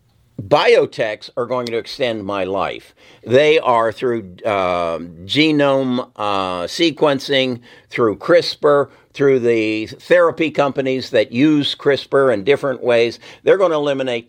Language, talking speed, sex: English, 125 wpm, male